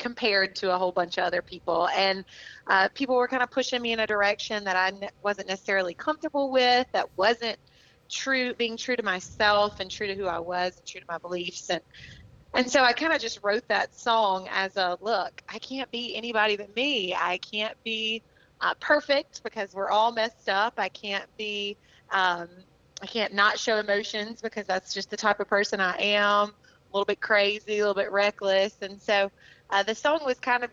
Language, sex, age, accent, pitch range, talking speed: English, female, 30-49, American, 185-225 Hz, 210 wpm